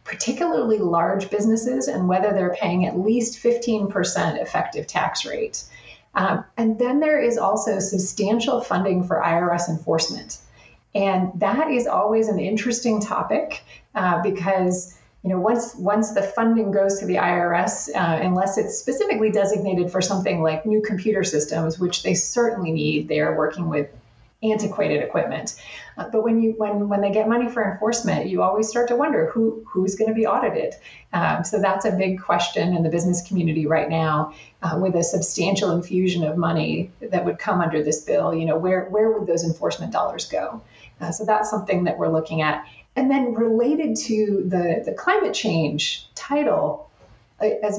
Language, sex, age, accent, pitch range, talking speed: English, female, 30-49, American, 175-220 Hz, 175 wpm